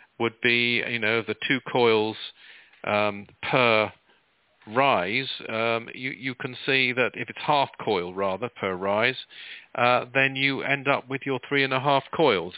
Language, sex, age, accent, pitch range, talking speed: English, male, 50-69, British, 125-145 Hz, 165 wpm